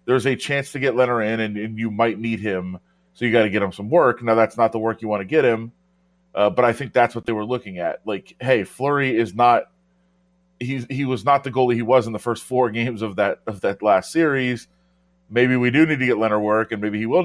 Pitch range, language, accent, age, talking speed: 110-160 Hz, English, American, 30-49, 260 wpm